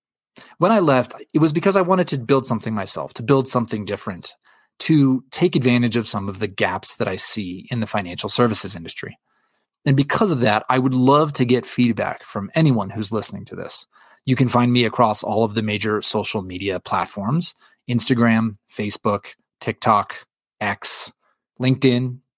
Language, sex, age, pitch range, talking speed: English, male, 30-49, 105-135 Hz, 175 wpm